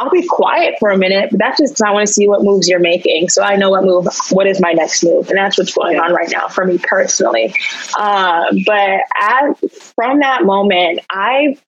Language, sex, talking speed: English, female, 230 wpm